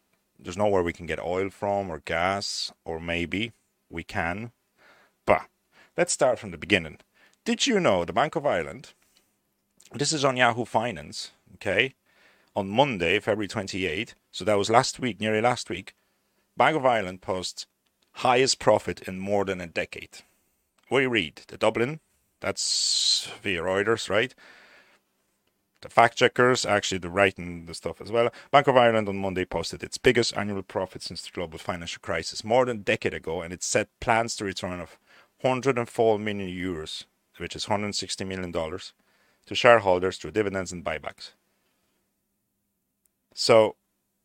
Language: English